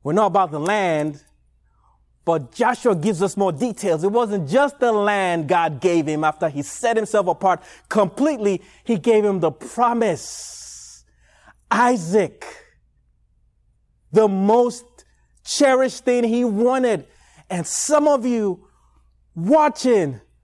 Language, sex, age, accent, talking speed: English, male, 30-49, American, 125 wpm